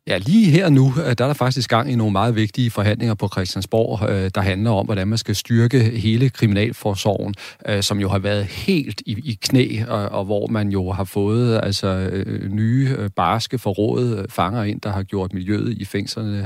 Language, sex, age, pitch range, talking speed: Danish, male, 30-49, 95-115 Hz, 180 wpm